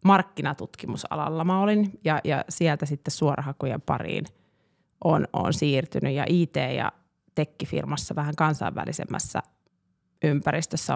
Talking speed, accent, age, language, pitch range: 105 wpm, native, 30-49, Finnish, 145-170 Hz